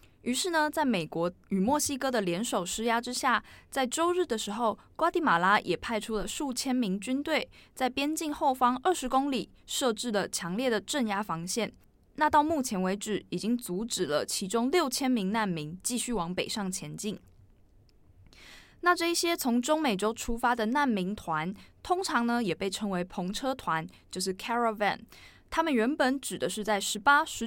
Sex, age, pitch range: female, 20-39, 195-260 Hz